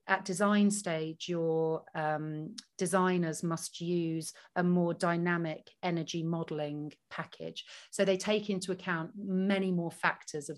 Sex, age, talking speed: female, 40-59, 130 wpm